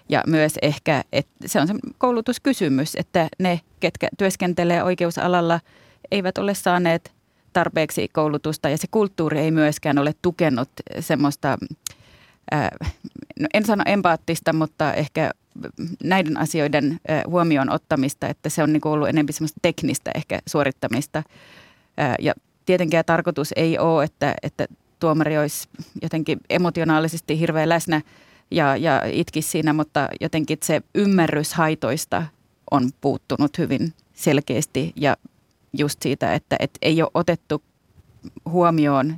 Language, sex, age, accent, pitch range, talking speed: Finnish, female, 30-49, native, 150-170 Hz, 130 wpm